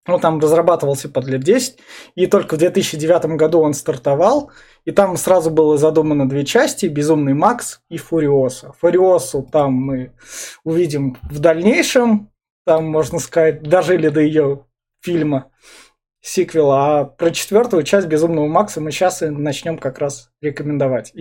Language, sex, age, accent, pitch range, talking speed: Russian, male, 20-39, native, 155-200 Hz, 145 wpm